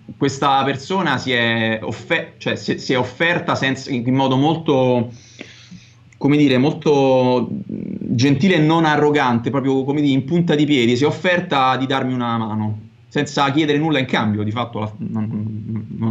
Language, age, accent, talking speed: Italian, 30-49, native, 170 wpm